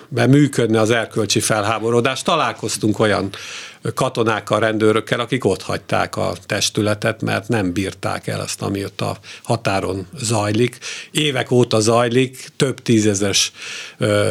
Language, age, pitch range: Hungarian, 50-69, 105-130 Hz